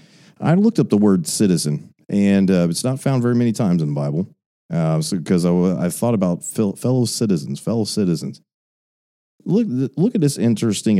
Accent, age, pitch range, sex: American, 40-59, 90-140 Hz, male